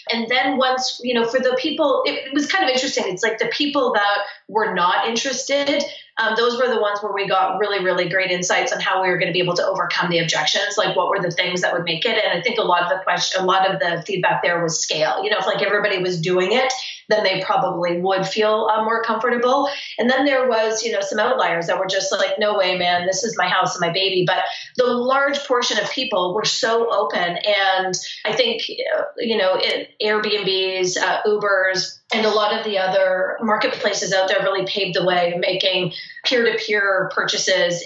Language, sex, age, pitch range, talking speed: English, female, 30-49, 185-230 Hz, 225 wpm